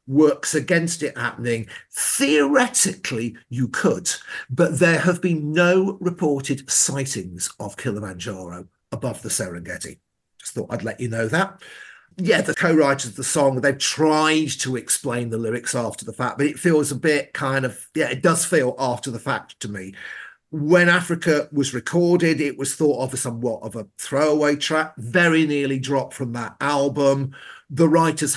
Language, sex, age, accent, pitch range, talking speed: English, male, 50-69, British, 125-165 Hz, 165 wpm